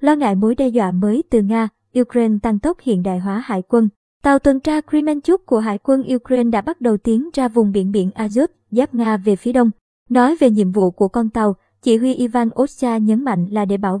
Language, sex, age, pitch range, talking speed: Vietnamese, male, 20-39, 210-255 Hz, 230 wpm